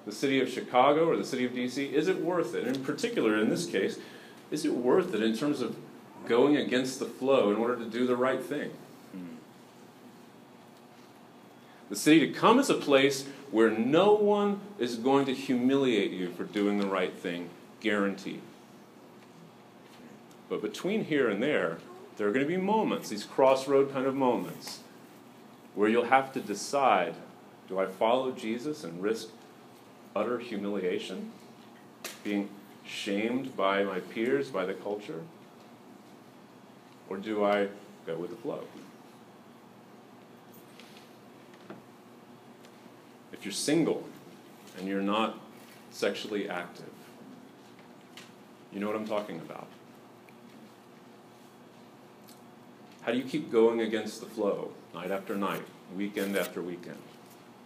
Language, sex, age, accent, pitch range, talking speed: English, male, 40-59, American, 100-130 Hz, 135 wpm